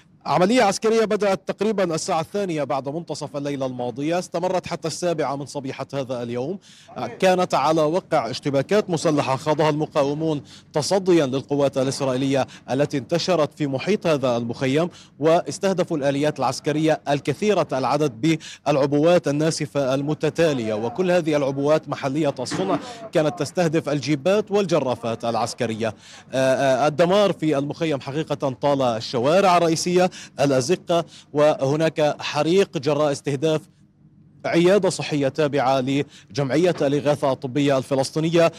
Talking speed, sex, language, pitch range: 110 wpm, male, Arabic, 140-170 Hz